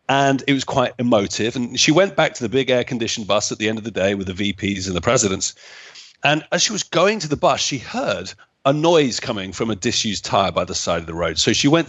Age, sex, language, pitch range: 40-59, male, English, 105-140 Hz